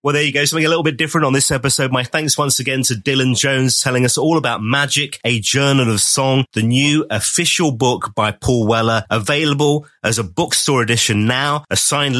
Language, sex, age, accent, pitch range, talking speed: English, male, 30-49, British, 110-150 Hz, 210 wpm